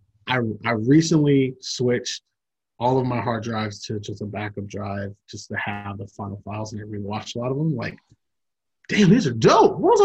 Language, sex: English, male